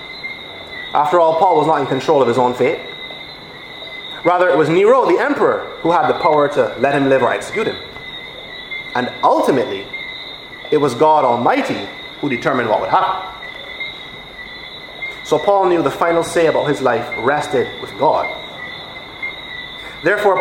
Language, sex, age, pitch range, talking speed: English, male, 30-49, 160-230 Hz, 155 wpm